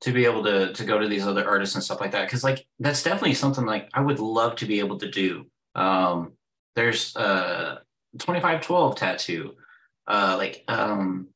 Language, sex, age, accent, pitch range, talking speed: English, male, 20-39, American, 95-135 Hz, 190 wpm